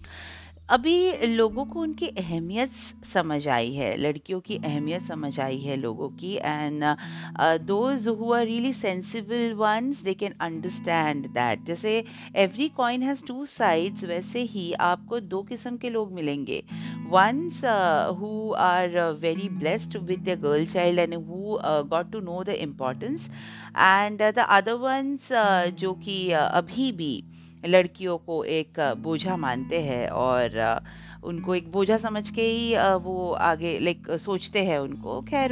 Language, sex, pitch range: Hindi, female, 160-230 Hz